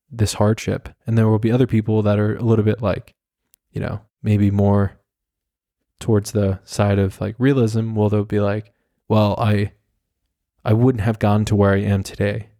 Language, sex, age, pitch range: English, male, 20-39, 105-115 Hz